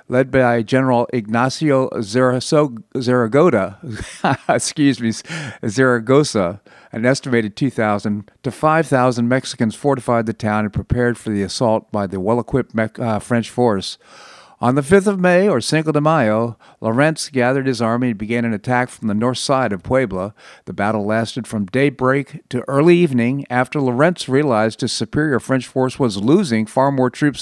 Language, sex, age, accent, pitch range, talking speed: English, male, 50-69, American, 110-130 Hz, 155 wpm